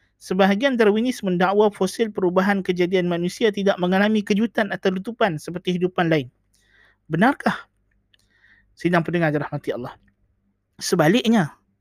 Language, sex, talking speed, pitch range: Malay, male, 105 wpm, 175-220 Hz